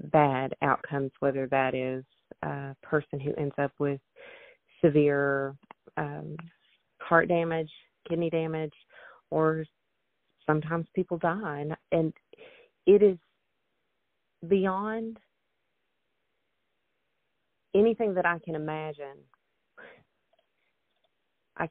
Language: English